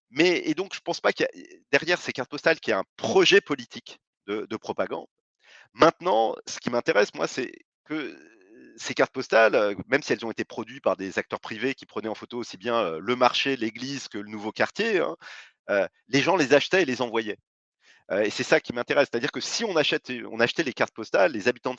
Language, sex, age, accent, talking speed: French, male, 30-49, French, 220 wpm